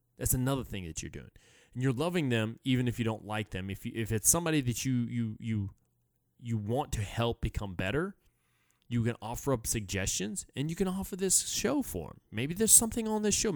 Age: 20-39